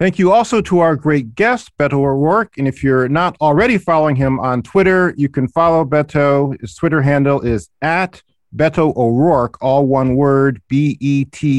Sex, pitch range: male, 130-170 Hz